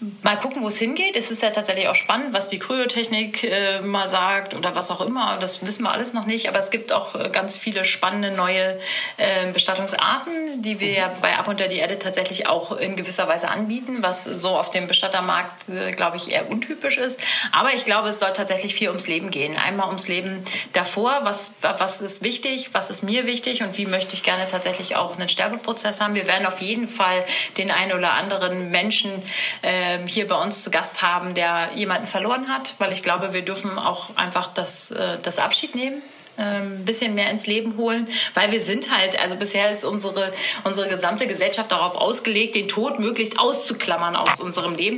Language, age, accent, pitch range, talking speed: German, 30-49, German, 185-220 Hz, 205 wpm